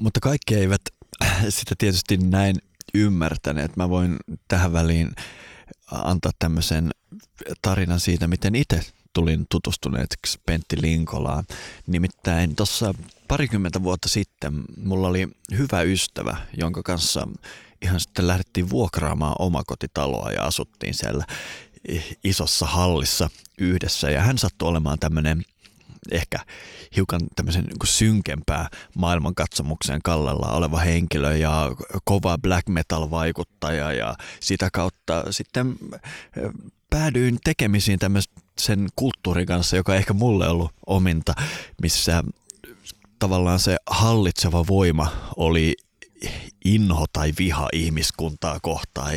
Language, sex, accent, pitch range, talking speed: Finnish, male, native, 80-95 Hz, 105 wpm